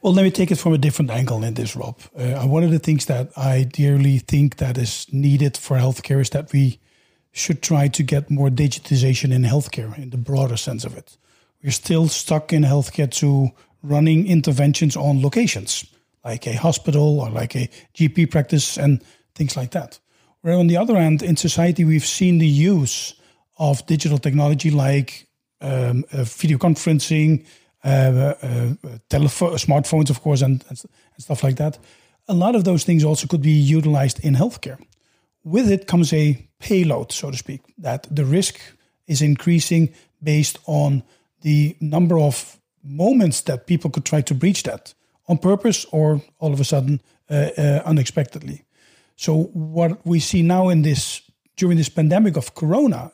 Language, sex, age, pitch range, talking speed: Dutch, male, 40-59, 135-165 Hz, 175 wpm